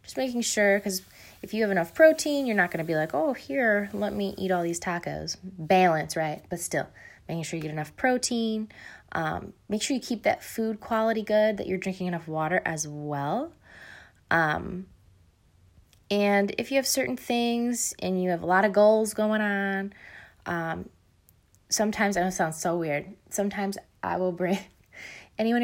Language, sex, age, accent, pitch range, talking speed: English, female, 20-39, American, 165-210 Hz, 180 wpm